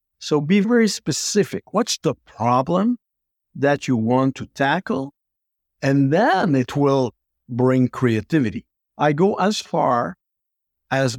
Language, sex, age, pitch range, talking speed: English, male, 60-79, 110-140 Hz, 125 wpm